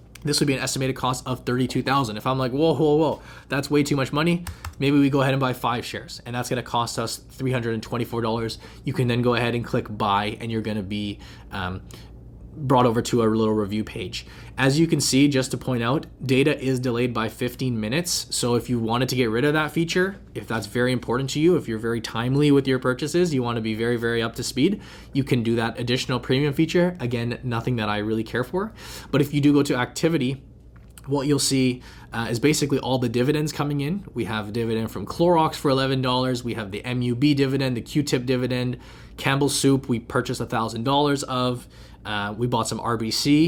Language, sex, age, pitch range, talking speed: English, male, 20-39, 115-145 Hz, 220 wpm